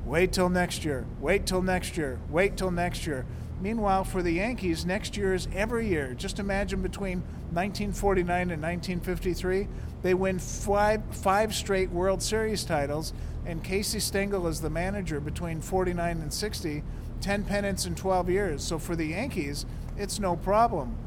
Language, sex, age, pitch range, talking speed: English, male, 40-59, 165-185 Hz, 160 wpm